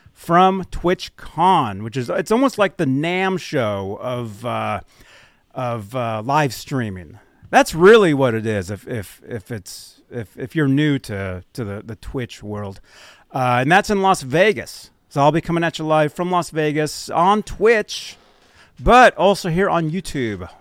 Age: 30-49